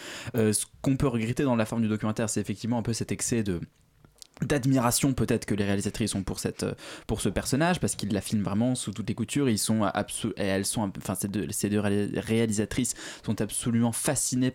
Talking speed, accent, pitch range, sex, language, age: 215 wpm, French, 105-130 Hz, male, French, 20-39